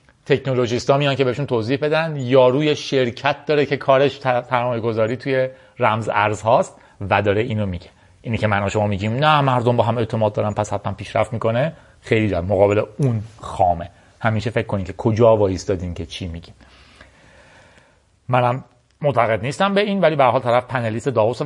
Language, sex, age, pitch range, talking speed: Persian, male, 30-49, 110-140 Hz, 170 wpm